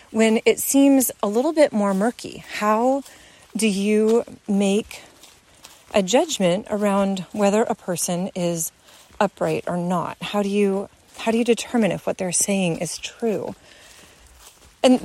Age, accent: 30-49, American